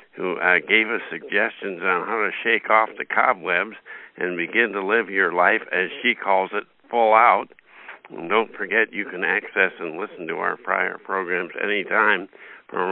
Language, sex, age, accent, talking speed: English, male, 60-79, American, 170 wpm